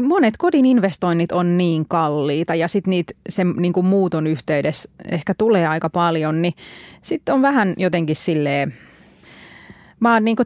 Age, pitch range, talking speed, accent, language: 30-49, 160-190 Hz, 145 wpm, native, Finnish